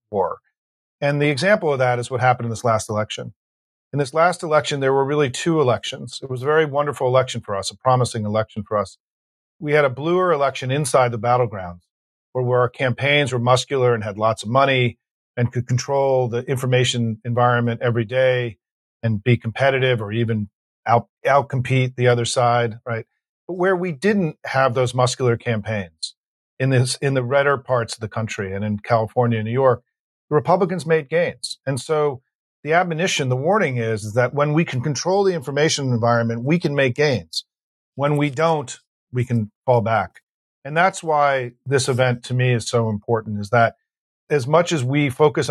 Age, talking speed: 40-59, 190 wpm